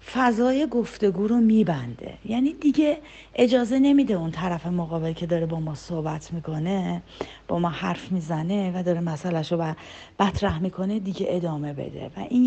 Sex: female